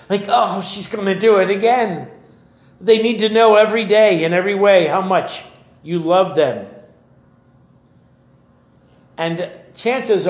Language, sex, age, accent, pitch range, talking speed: English, male, 50-69, American, 175-230 Hz, 140 wpm